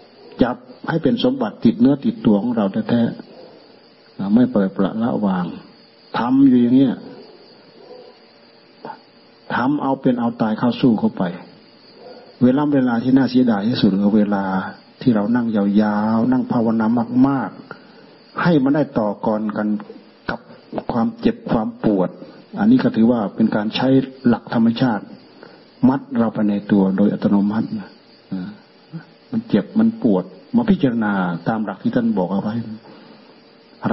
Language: Thai